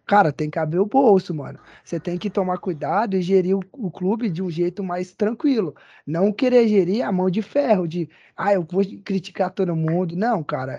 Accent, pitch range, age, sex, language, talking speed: Brazilian, 185-240 Hz, 20-39, male, Portuguese, 205 wpm